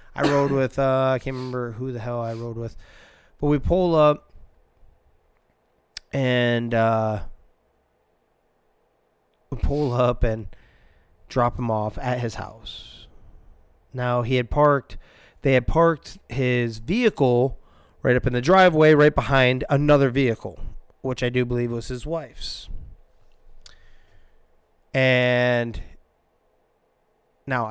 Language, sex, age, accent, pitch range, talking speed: English, male, 30-49, American, 115-140 Hz, 120 wpm